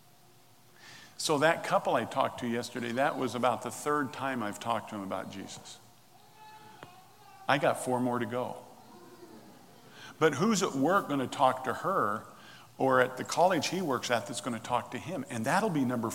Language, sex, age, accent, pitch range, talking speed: English, male, 50-69, American, 120-165 Hz, 190 wpm